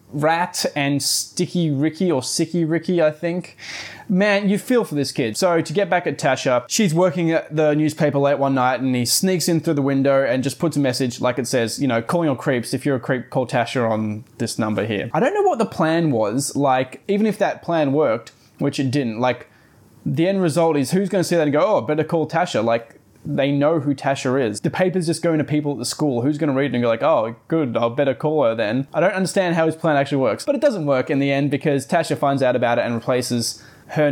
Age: 20-39